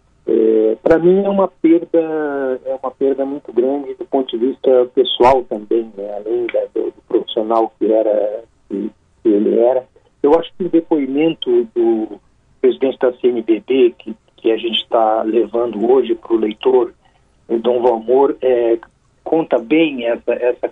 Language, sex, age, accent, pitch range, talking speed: Portuguese, male, 50-69, Brazilian, 115-185 Hz, 155 wpm